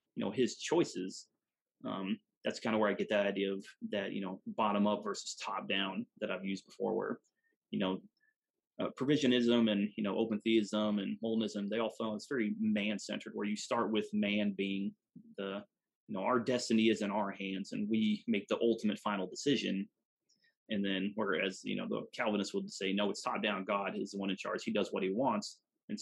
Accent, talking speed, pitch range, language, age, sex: American, 210 wpm, 100-110 Hz, English, 30-49, male